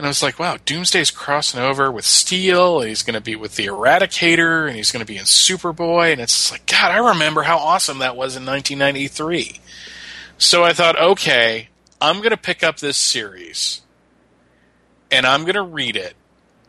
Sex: male